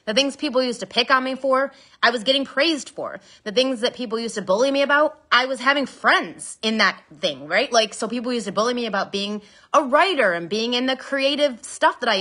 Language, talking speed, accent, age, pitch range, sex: English, 245 wpm, American, 30-49, 185-265 Hz, female